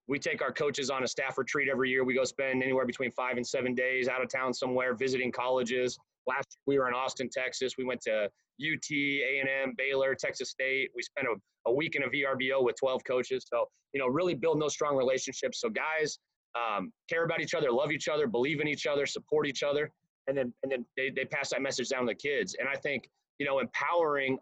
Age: 30-49